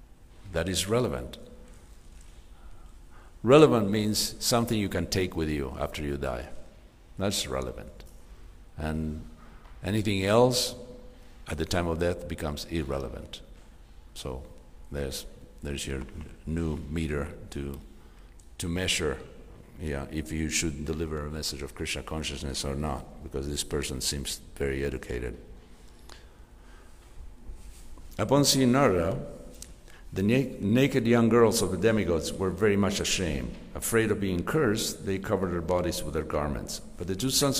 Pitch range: 75-105 Hz